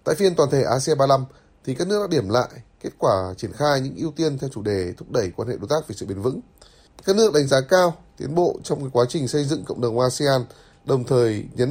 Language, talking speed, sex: Vietnamese, 260 wpm, male